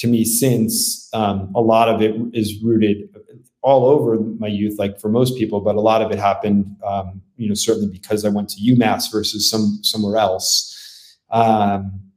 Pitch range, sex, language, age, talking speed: 105-120 Hz, male, English, 30-49, 190 wpm